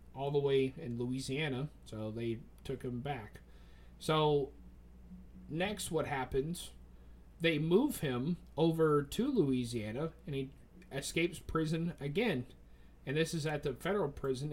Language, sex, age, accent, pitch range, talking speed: English, male, 30-49, American, 105-165 Hz, 130 wpm